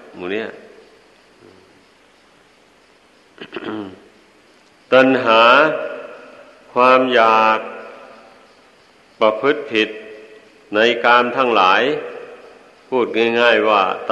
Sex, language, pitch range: male, Thai, 115-130 Hz